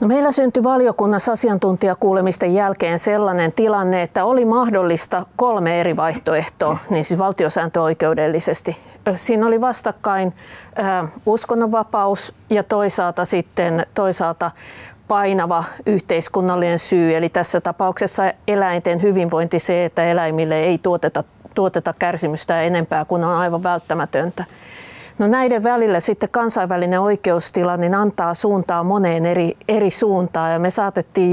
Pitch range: 170-205 Hz